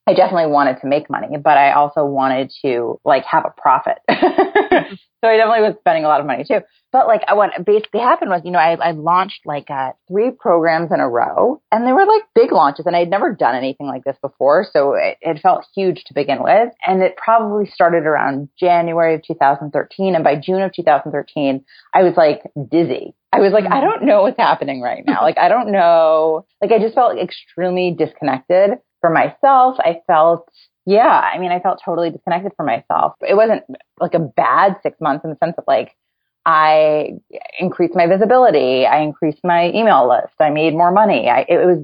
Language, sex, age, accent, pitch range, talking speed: English, female, 30-49, American, 155-220 Hz, 205 wpm